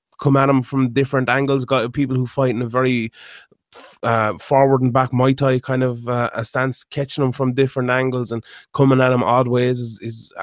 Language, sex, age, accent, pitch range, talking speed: English, male, 20-39, Irish, 120-140 Hz, 215 wpm